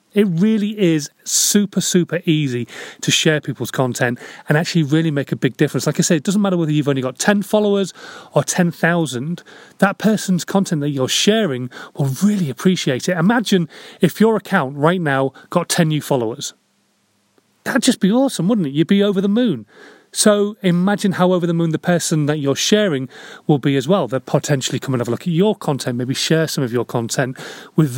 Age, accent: 30-49, British